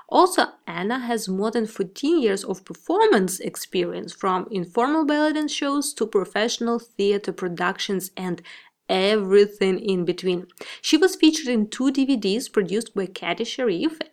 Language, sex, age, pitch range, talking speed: English, female, 20-39, 195-265 Hz, 140 wpm